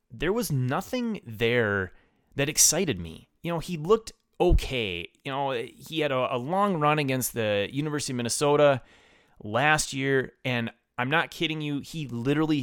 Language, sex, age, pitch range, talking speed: English, male, 30-49, 110-145 Hz, 160 wpm